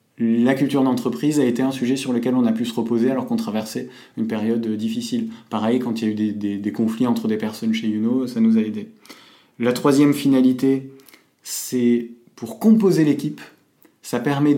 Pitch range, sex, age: 115-160 Hz, male, 20-39